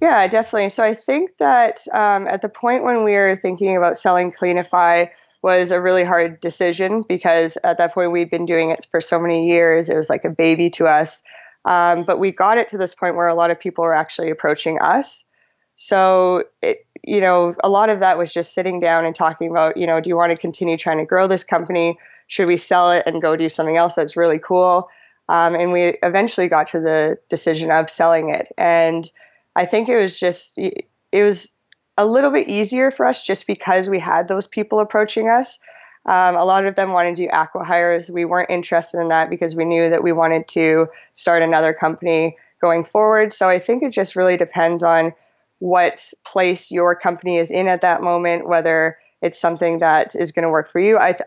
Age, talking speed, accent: 20-39, 215 wpm, American